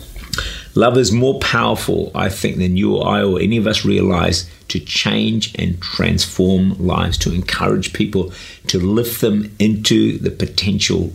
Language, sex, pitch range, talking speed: English, male, 90-110 Hz, 155 wpm